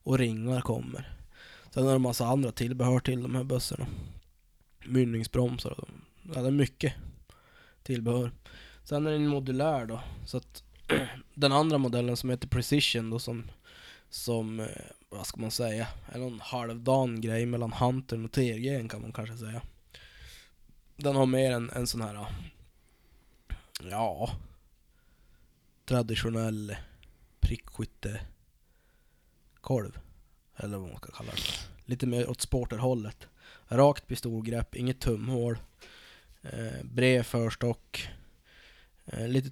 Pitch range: 110-125 Hz